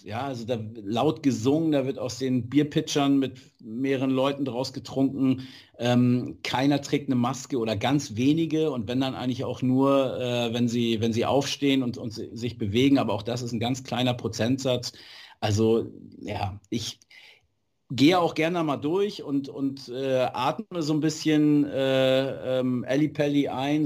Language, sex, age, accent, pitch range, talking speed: German, male, 50-69, German, 110-135 Hz, 170 wpm